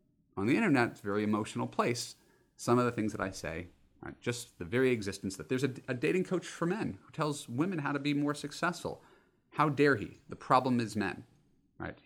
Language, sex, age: English, male, 30-49